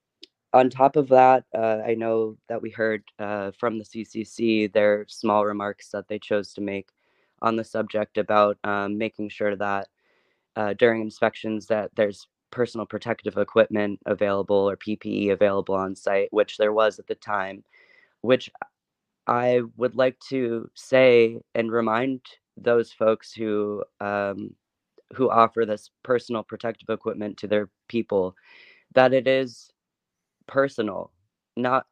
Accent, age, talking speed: American, 20-39, 145 wpm